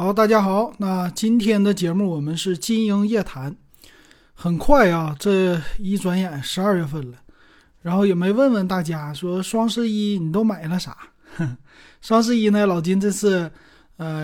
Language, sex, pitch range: Chinese, male, 165-215 Hz